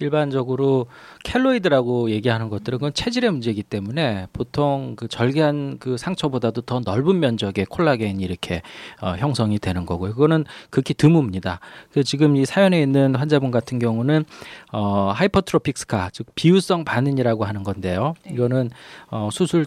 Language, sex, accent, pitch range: Korean, male, native, 115-155 Hz